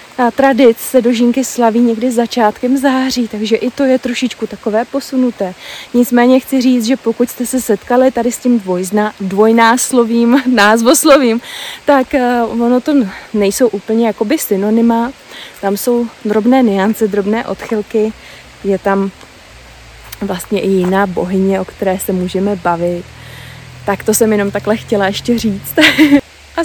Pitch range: 195-250 Hz